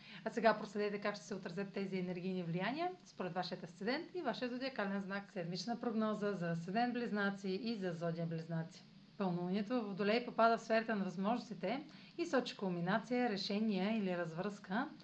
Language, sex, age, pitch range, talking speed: Bulgarian, female, 40-59, 185-235 Hz, 160 wpm